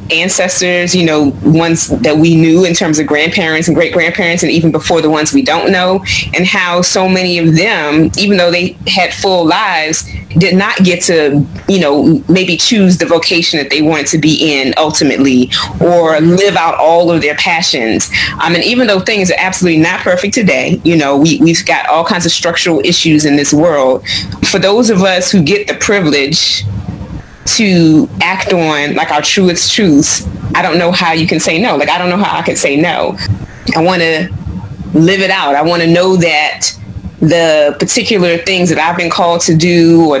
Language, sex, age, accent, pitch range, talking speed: English, female, 30-49, American, 155-185 Hz, 200 wpm